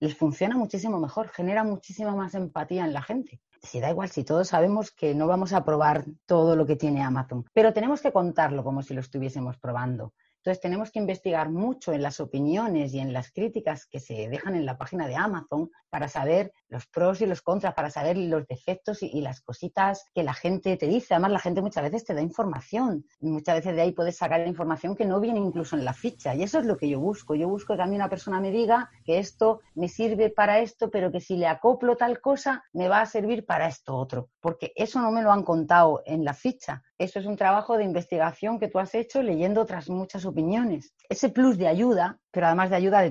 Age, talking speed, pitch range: 30-49, 235 wpm, 155-210 Hz